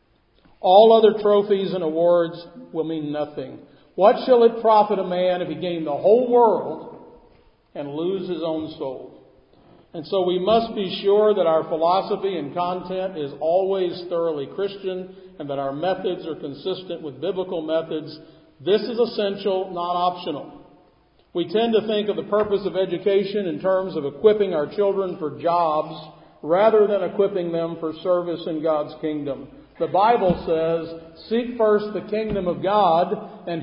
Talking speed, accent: 160 wpm, American